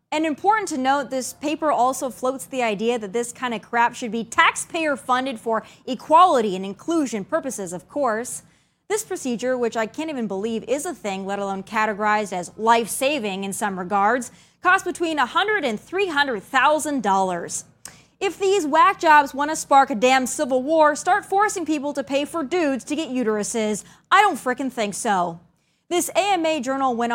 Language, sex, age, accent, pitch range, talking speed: English, female, 20-39, American, 225-315 Hz, 175 wpm